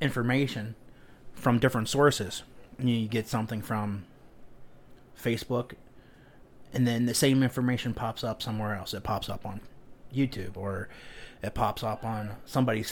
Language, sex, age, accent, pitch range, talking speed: English, male, 30-49, American, 110-130 Hz, 135 wpm